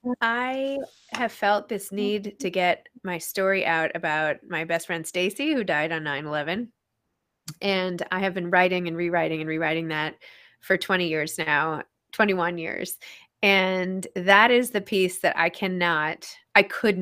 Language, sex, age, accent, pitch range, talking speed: English, female, 20-39, American, 170-200 Hz, 160 wpm